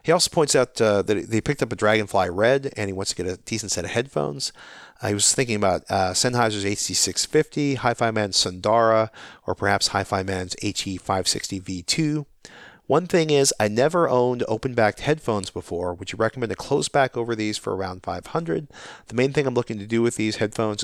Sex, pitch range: male, 95-115 Hz